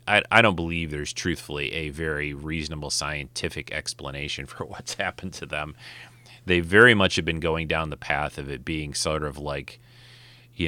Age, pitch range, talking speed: 30-49, 75-105 Hz, 180 wpm